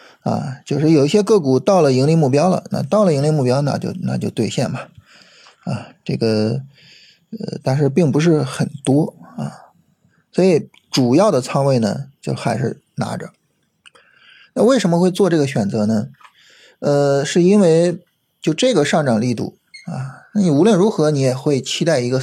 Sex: male